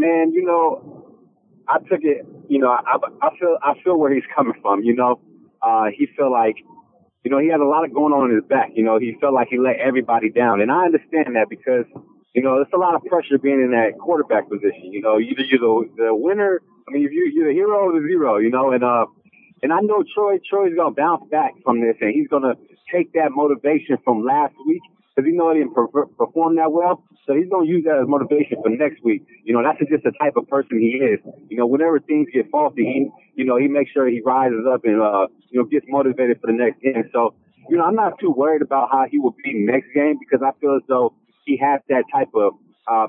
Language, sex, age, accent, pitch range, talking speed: English, male, 30-49, American, 120-160 Hz, 250 wpm